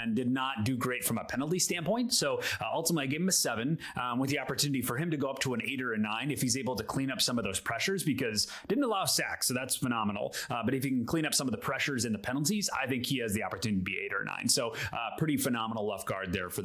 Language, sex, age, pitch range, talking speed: English, male, 30-49, 110-140 Hz, 300 wpm